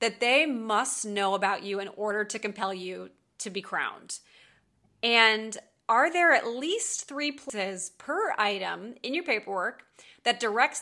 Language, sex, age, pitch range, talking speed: English, female, 30-49, 210-280 Hz, 155 wpm